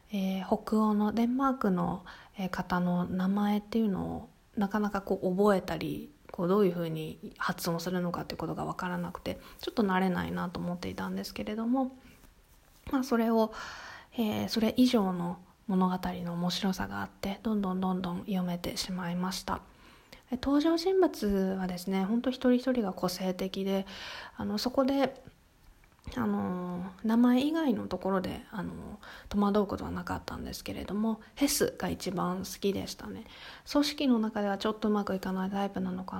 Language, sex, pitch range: Japanese, female, 180-225 Hz